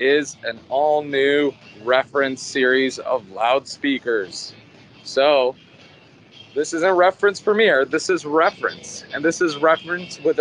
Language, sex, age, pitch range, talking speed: English, male, 30-49, 130-165 Hz, 120 wpm